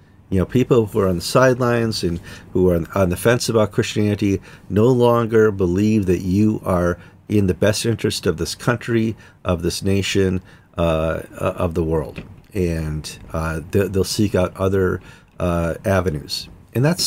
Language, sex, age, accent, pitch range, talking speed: English, male, 50-69, American, 95-125 Hz, 160 wpm